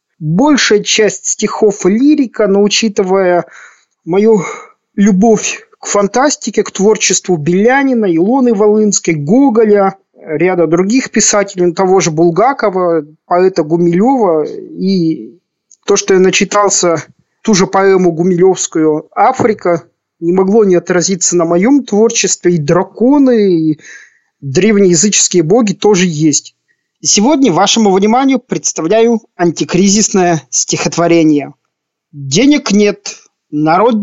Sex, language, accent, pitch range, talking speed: male, Russian, native, 175-225 Hz, 100 wpm